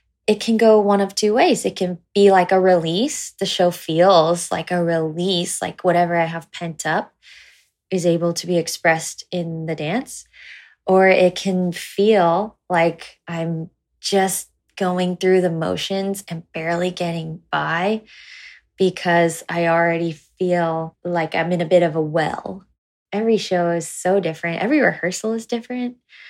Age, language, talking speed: 20-39, English, 155 wpm